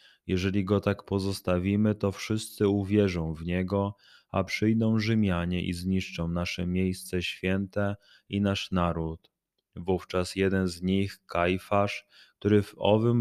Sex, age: male, 20-39